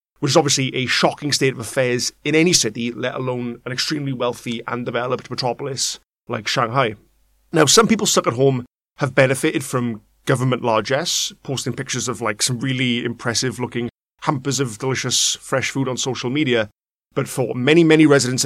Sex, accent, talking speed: male, British, 170 wpm